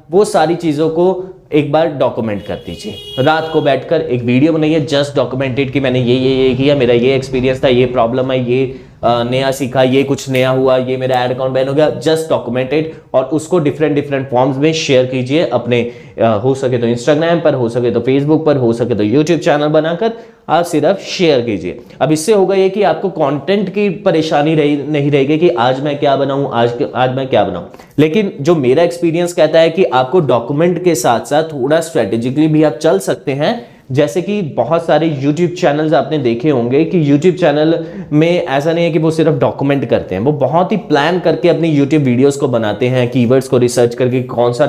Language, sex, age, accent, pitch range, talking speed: Hindi, male, 20-39, native, 130-160 Hz, 210 wpm